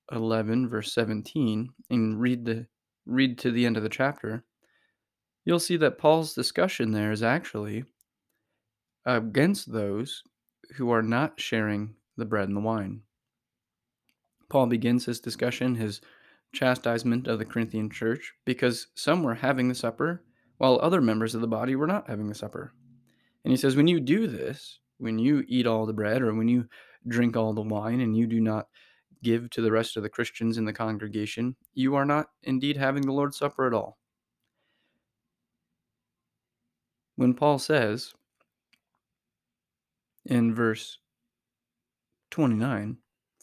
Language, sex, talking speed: English, male, 150 wpm